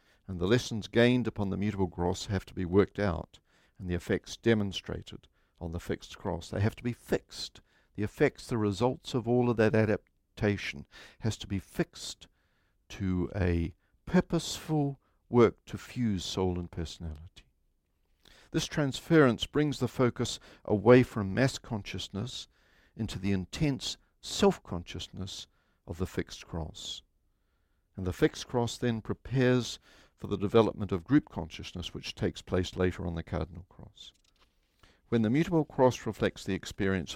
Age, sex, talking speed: 60-79, male, 150 wpm